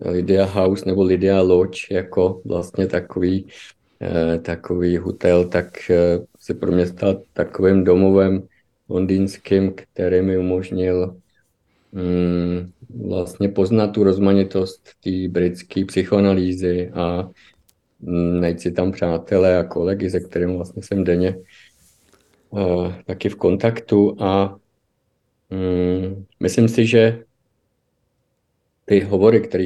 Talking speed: 105 wpm